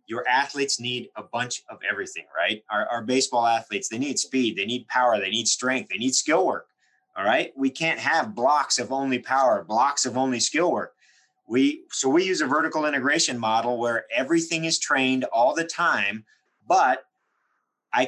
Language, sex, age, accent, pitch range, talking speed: English, male, 30-49, American, 125-175 Hz, 185 wpm